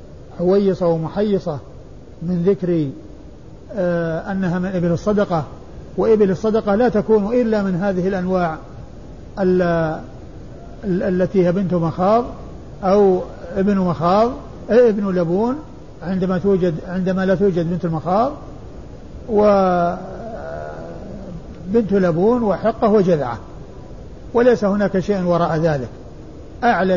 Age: 50-69